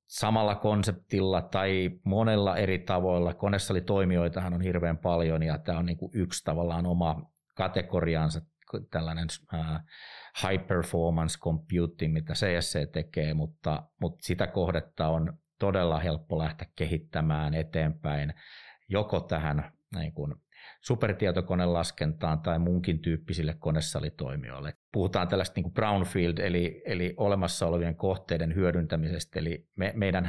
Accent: native